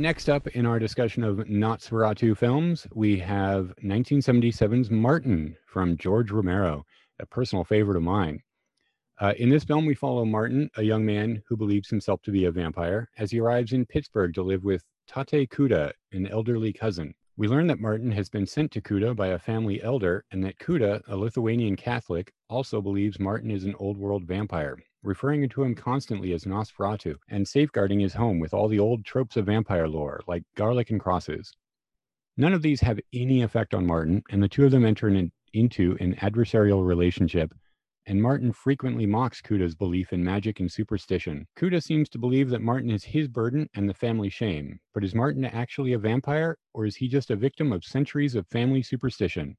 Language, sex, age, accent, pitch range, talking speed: English, male, 40-59, American, 100-125 Hz, 190 wpm